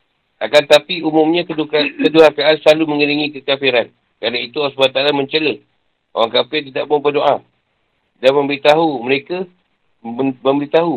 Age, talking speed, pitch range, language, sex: 50-69, 125 wpm, 135-160 Hz, Malay, male